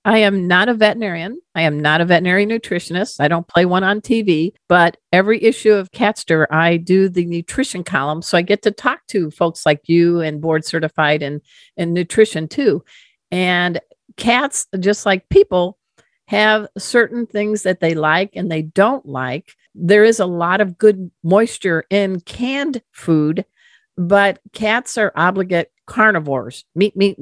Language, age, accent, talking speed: English, 50-69, American, 165 wpm